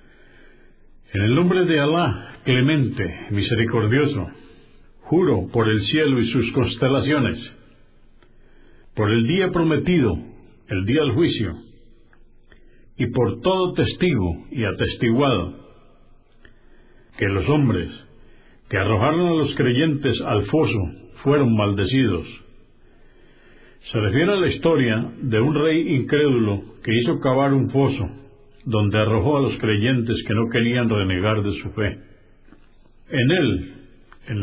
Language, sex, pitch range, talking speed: Spanish, male, 110-145 Hz, 120 wpm